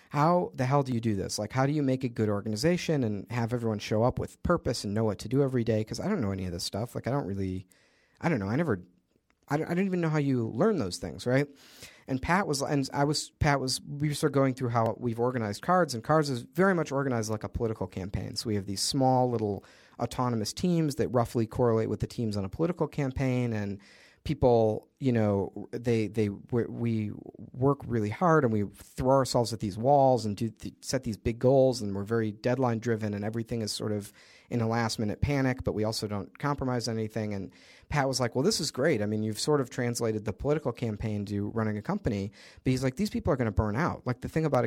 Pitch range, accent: 105-135 Hz, American